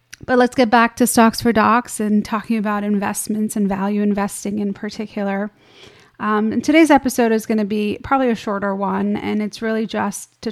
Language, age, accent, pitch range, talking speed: English, 30-49, American, 205-230 Hz, 195 wpm